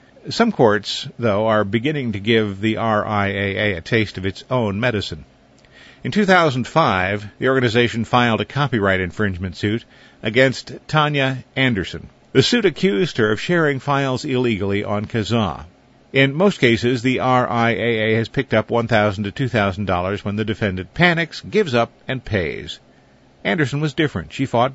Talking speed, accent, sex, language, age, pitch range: 150 wpm, American, male, English, 50-69, 105-135 Hz